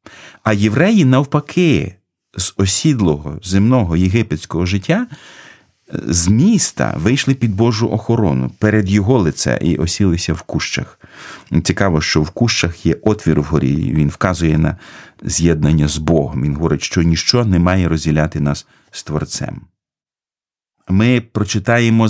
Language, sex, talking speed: Ukrainian, male, 125 wpm